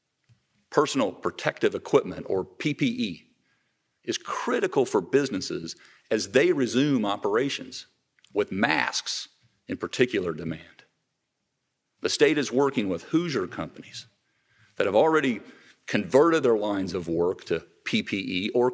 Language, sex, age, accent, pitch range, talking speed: English, male, 50-69, American, 115-155 Hz, 115 wpm